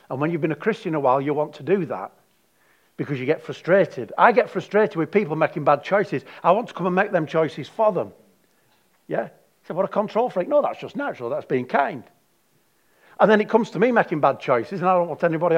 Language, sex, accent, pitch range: English, male, British, 140-195 Hz